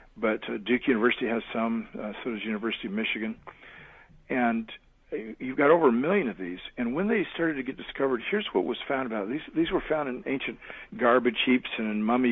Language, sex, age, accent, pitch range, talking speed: English, male, 50-69, American, 110-135 Hz, 215 wpm